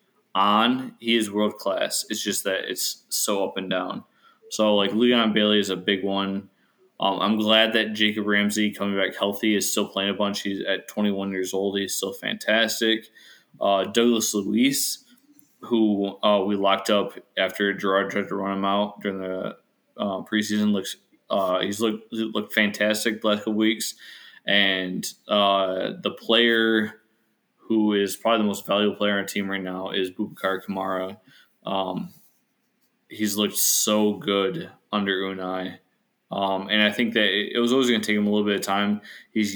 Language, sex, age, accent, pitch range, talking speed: English, male, 20-39, American, 100-110 Hz, 175 wpm